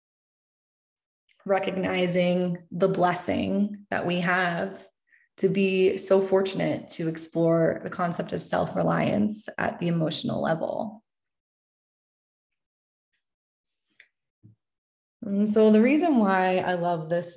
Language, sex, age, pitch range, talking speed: English, female, 20-39, 170-190 Hz, 95 wpm